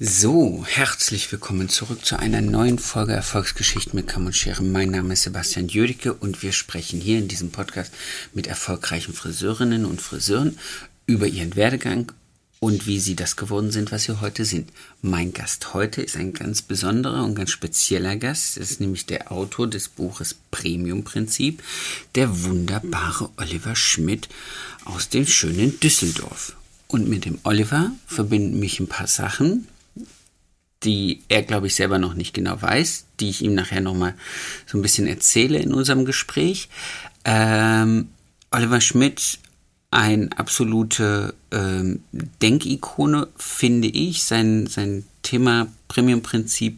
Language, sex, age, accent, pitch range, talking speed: German, male, 50-69, German, 95-115 Hz, 150 wpm